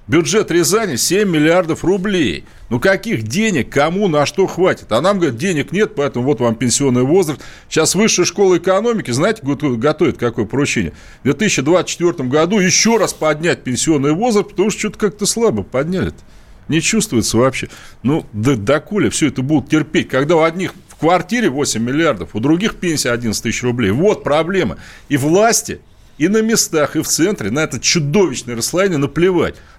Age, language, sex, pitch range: 40-59, Russian, male, 135-190 Hz